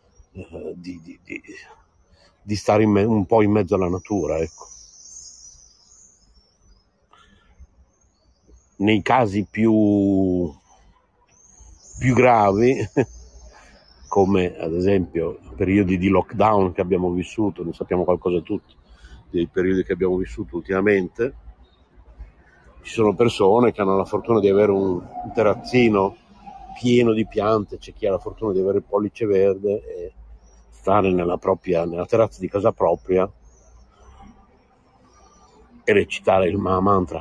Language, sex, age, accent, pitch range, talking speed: Italian, male, 50-69, native, 85-110 Hz, 120 wpm